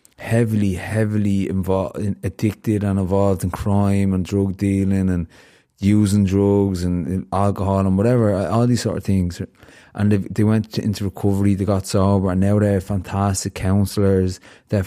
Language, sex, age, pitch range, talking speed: English, male, 20-39, 95-110 Hz, 150 wpm